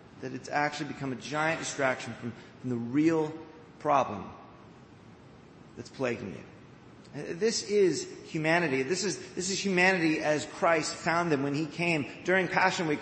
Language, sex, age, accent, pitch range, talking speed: English, male, 30-49, American, 150-190 Hz, 150 wpm